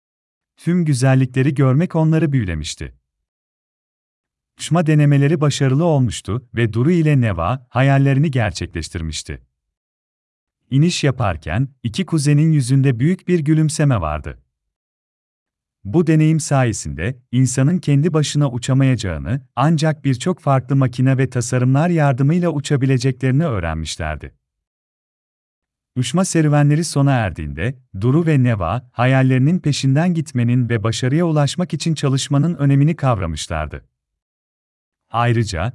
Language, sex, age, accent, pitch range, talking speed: Turkish, male, 40-59, native, 90-145 Hz, 95 wpm